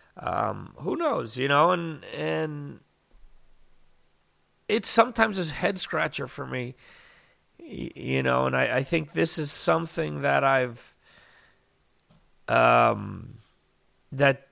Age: 40-59